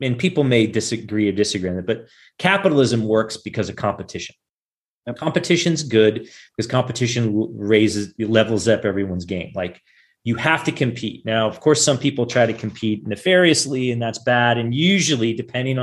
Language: English